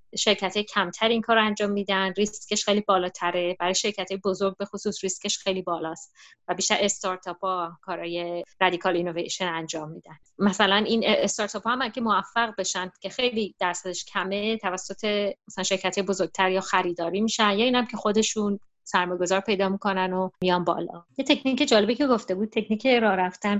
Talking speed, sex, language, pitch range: 160 wpm, female, Persian, 185-220 Hz